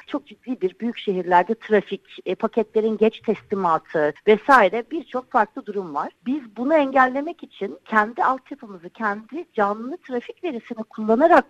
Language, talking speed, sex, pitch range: Turkish, 135 wpm, female, 200-270 Hz